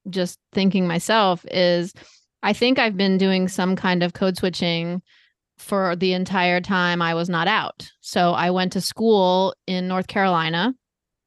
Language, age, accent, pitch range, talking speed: English, 30-49, American, 175-200 Hz, 160 wpm